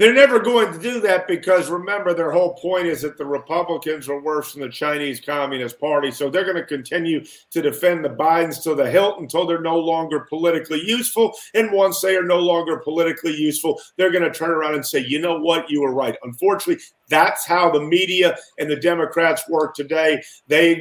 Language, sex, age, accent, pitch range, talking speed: English, male, 50-69, American, 155-205 Hz, 210 wpm